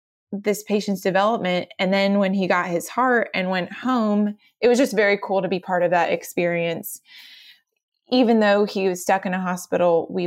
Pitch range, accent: 175-210 Hz, American